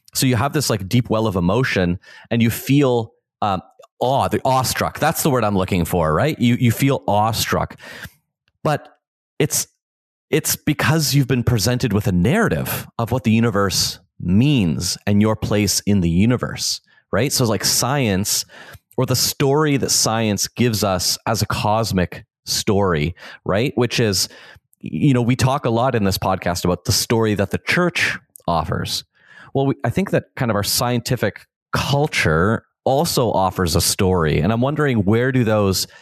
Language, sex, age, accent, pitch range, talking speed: English, male, 30-49, American, 95-120 Hz, 170 wpm